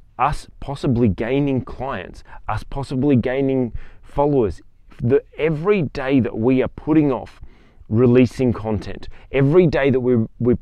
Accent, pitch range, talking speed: Australian, 105-130 Hz, 125 wpm